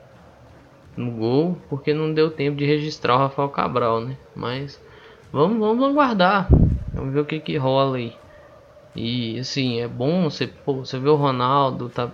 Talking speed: 170 wpm